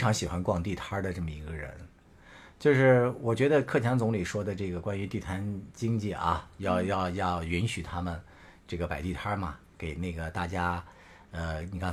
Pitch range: 85-115 Hz